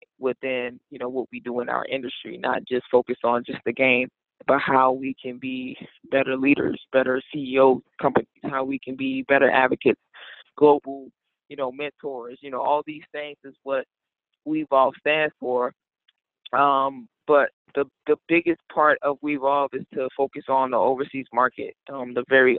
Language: English